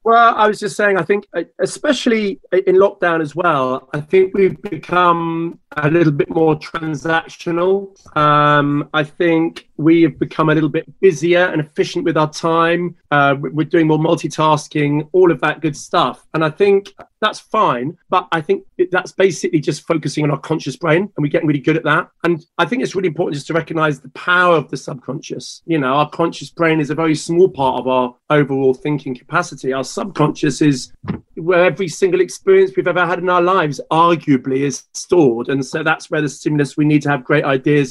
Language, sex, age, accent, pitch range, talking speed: English, male, 30-49, British, 145-175 Hz, 200 wpm